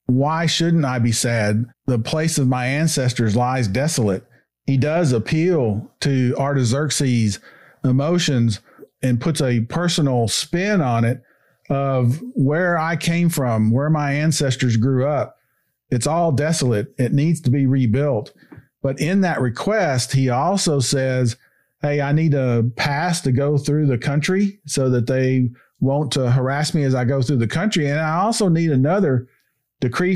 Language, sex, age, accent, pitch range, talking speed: English, male, 40-59, American, 125-155 Hz, 155 wpm